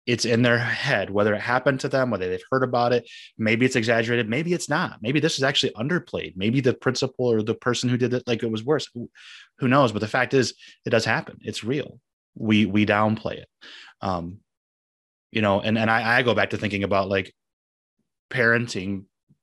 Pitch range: 100-125 Hz